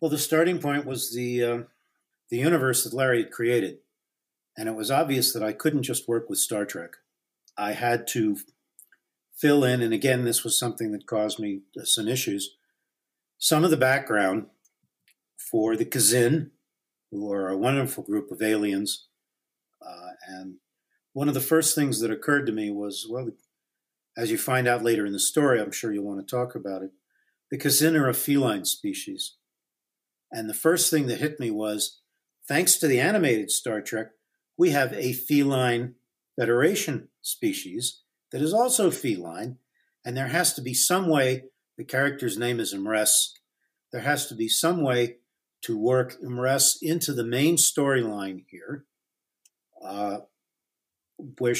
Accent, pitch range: American, 110-150 Hz